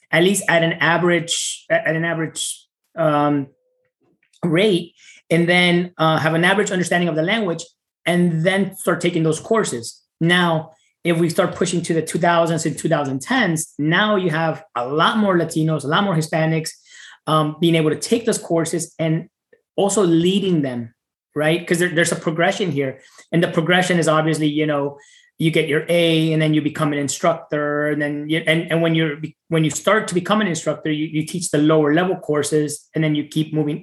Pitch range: 155-175 Hz